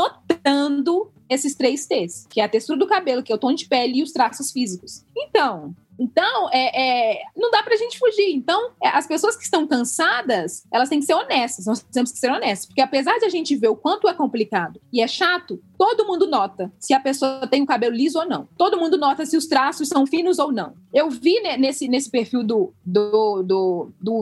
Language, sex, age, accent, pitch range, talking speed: Portuguese, female, 20-39, Brazilian, 255-380 Hz, 225 wpm